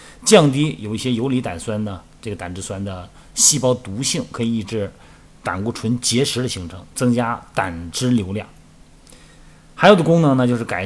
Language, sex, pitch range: Chinese, male, 100-130 Hz